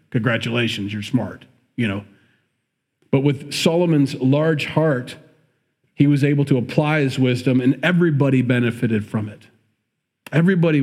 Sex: male